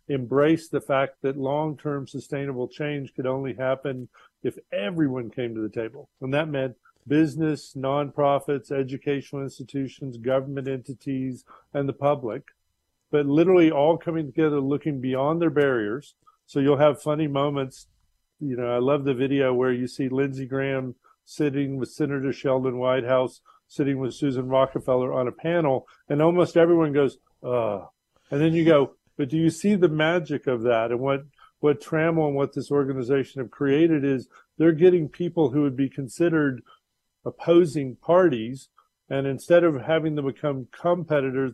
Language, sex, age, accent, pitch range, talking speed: English, male, 50-69, American, 130-155 Hz, 160 wpm